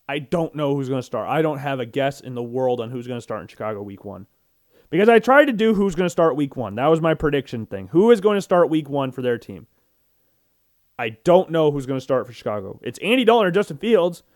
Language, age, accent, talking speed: English, 30-49, American, 270 wpm